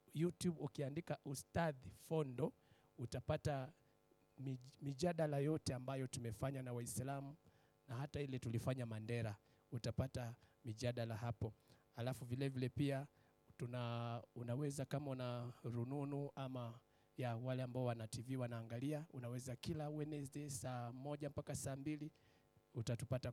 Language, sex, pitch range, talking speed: English, male, 120-145 Hz, 115 wpm